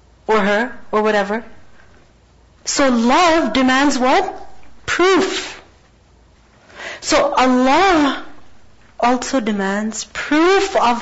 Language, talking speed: English, 80 wpm